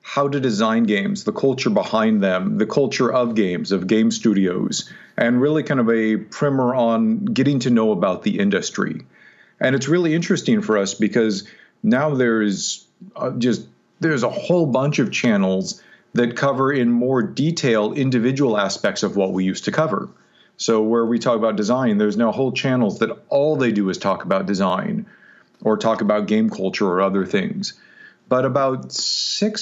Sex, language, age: male, English, 40-59